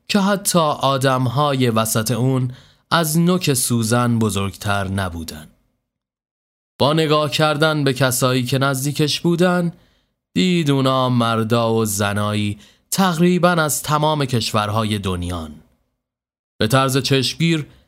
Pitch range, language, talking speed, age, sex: 105-150 Hz, Persian, 105 wpm, 30-49, male